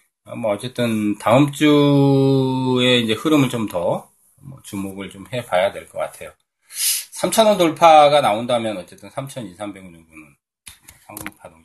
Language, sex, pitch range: Korean, male, 95-130 Hz